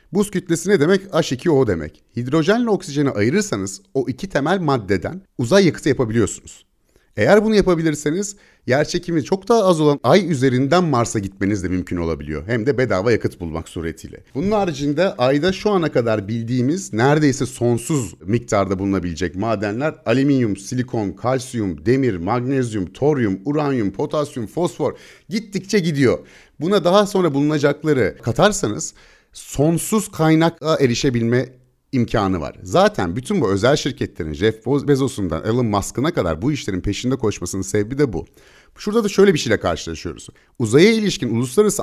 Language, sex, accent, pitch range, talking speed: Turkish, male, native, 105-175 Hz, 140 wpm